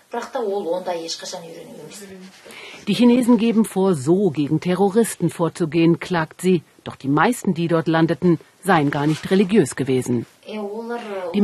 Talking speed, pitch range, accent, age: 115 wpm, 165-210 Hz, German, 50-69